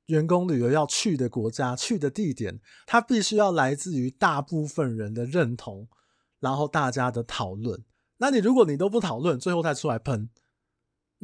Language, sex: Chinese, male